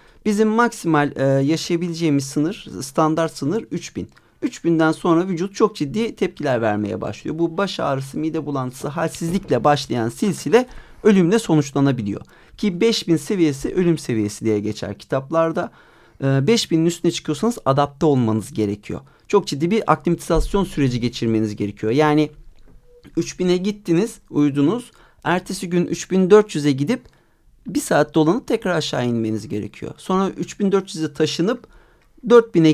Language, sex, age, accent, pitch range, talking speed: Turkish, male, 40-59, native, 130-180 Hz, 125 wpm